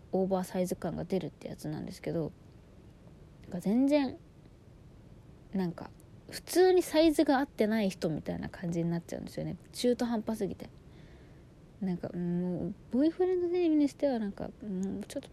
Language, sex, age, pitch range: Japanese, female, 20-39, 175-215 Hz